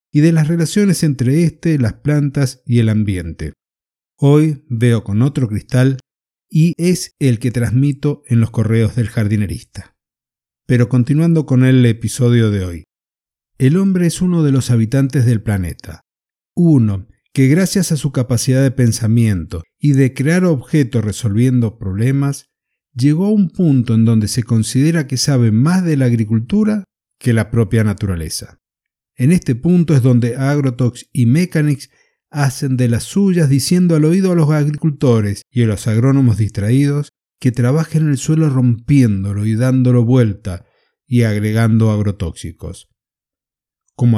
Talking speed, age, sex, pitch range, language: 150 wpm, 50-69, male, 115-150 Hz, Spanish